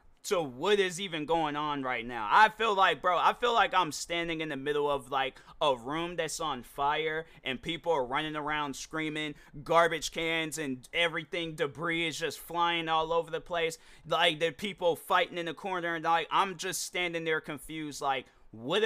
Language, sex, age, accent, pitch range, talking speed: English, male, 30-49, American, 135-200 Hz, 195 wpm